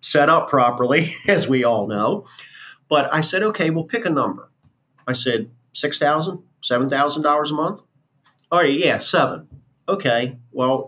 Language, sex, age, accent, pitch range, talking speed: English, male, 50-69, American, 115-150 Hz, 160 wpm